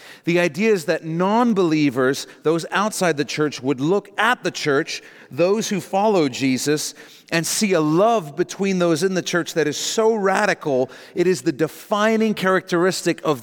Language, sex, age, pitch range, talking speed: English, male, 40-59, 150-195 Hz, 165 wpm